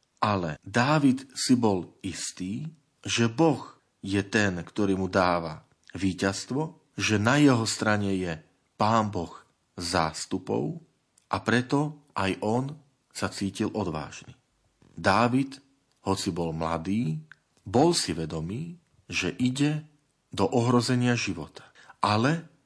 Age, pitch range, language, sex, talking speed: 40-59, 95-130 Hz, Slovak, male, 110 wpm